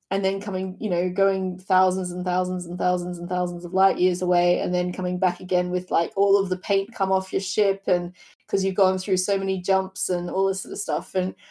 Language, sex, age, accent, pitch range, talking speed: English, female, 20-39, Australian, 185-215 Hz, 245 wpm